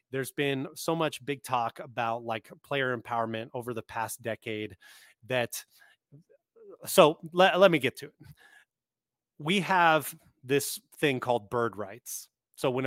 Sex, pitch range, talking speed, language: male, 115-145 Hz, 145 wpm, English